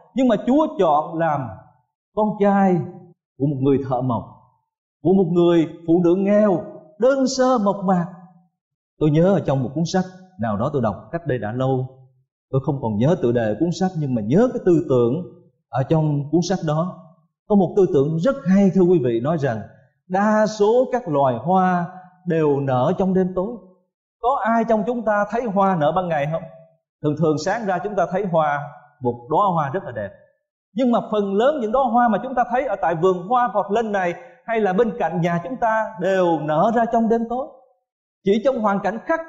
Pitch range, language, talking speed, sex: 165-245 Hz, Vietnamese, 210 wpm, male